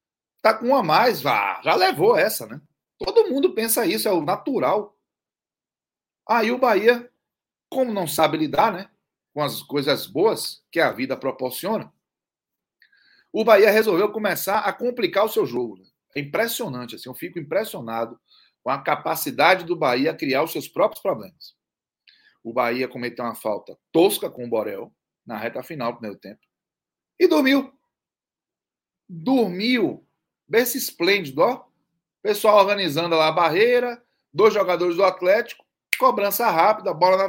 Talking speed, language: 145 wpm, Portuguese